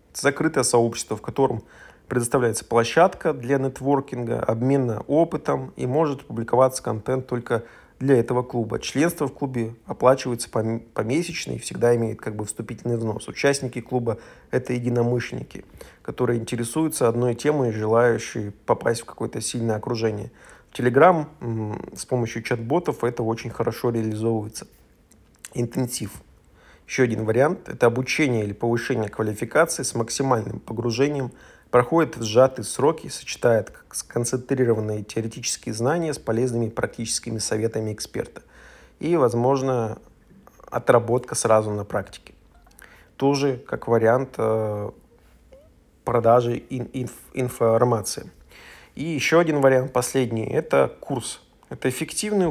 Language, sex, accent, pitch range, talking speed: Russian, male, native, 115-130 Hz, 110 wpm